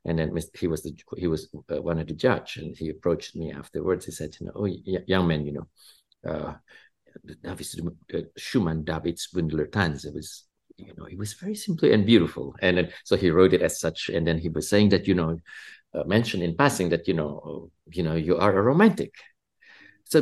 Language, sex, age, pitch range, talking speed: English, male, 50-69, 85-145 Hz, 200 wpm